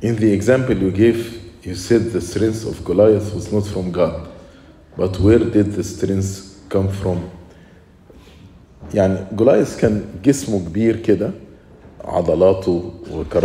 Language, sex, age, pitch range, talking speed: English, male, 40-59, 90-115 Hz, 130 wpm